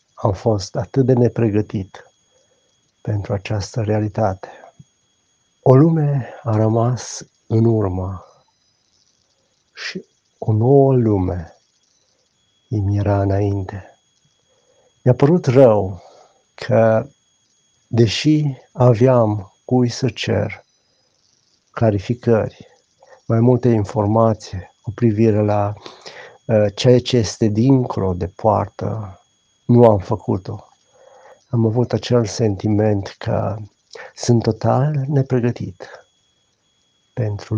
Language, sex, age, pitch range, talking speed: Romanian, male, 50-69, 100-120 Hz, 90 wpm